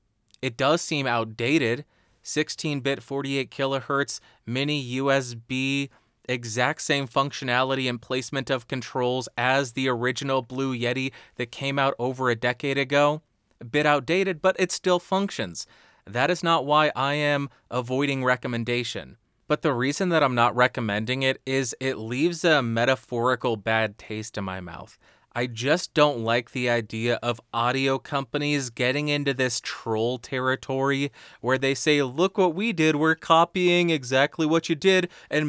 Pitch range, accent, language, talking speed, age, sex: 125-155 Hz, American, English, 150 wpm, 30-49, male